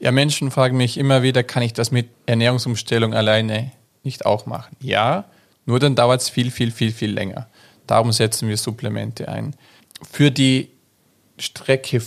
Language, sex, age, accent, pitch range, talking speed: German, male, 40-59, German, 115-135 Hz, 165 wpm